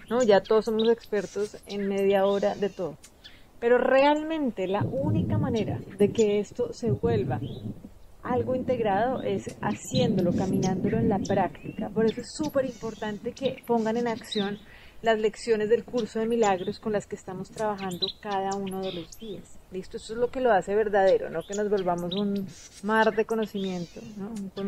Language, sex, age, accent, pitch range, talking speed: Spanish, female, 30-49, Colombian, 195-225 Hz, 170 wpm